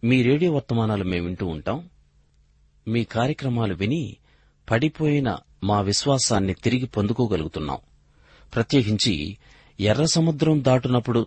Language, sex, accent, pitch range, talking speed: Telugu, male, native, 85-120 Hz, 95 wpm